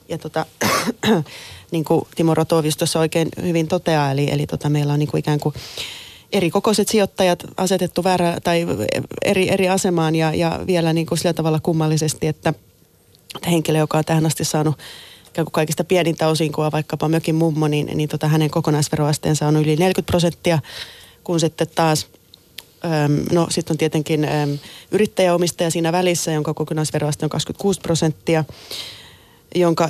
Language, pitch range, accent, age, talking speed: Finnish, 155-175 Hz, native, 20-39, 145 wpm